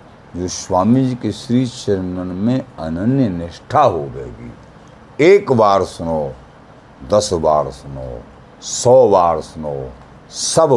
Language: Hindi